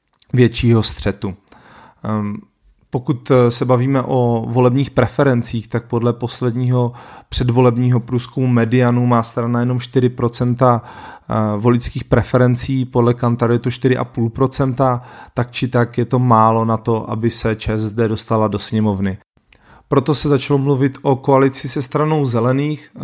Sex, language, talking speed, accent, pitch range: male, Czech, 125 wpm, native, 120-130 Hz